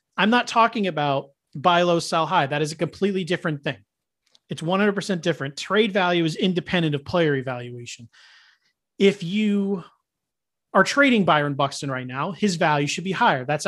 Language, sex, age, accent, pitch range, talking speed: English, male, 30-49, American, 150-205 Hz, 165 wpm